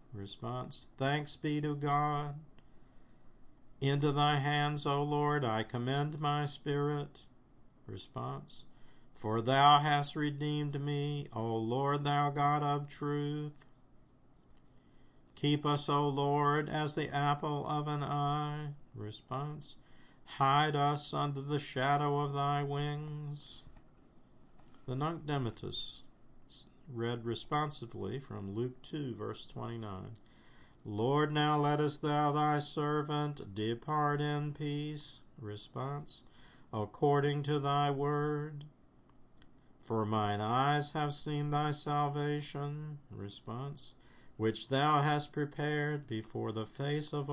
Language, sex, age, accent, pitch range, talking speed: English, male, 50-69, American, 130-150 Hz, 110 wpm